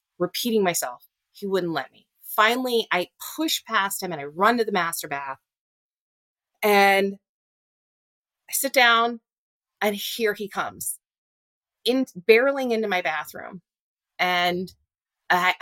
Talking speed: 125 wpm